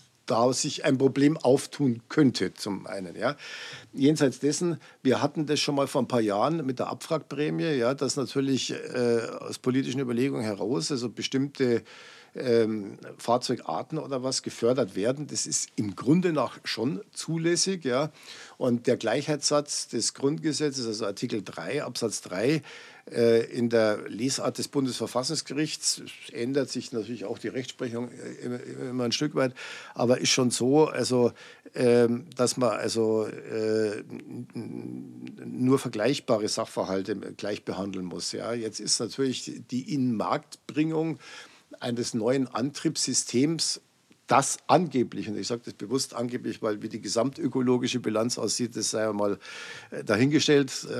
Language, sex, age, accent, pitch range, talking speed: German, male, 50-69, German, 115-140 Hz, 135 wpm